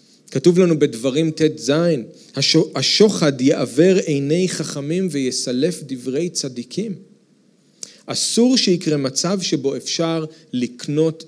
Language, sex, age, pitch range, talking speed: Hebrew, male, 40-59, 135-185 Hz, 90 wpm